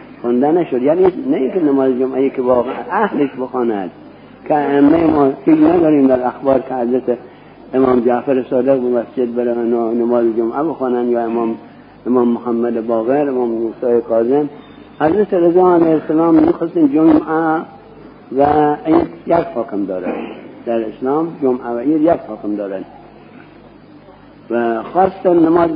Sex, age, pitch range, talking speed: male, 60-79, 120-165 Hz, 130 wpm